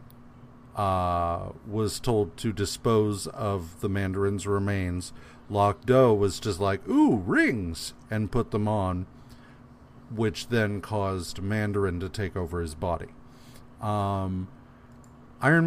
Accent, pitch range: American, 100-125 Hz